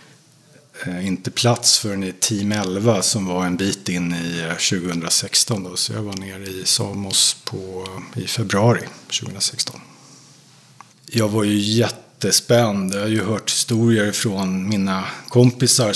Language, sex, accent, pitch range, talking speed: Swedish, male, Norwegian, 95-120 Hz, 140 wpm